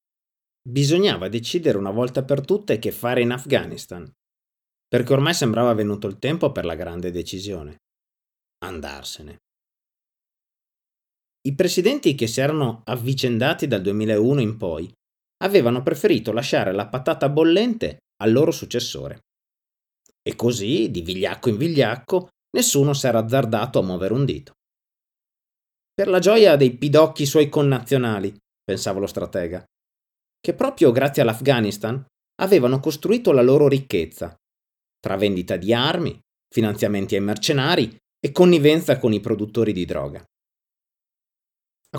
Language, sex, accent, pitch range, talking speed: Italian, male, native, 110-150 Hz, 125 wpm